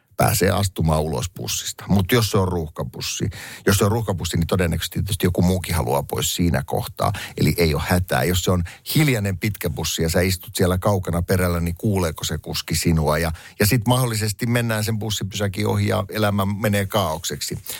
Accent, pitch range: native, 90-125 Hz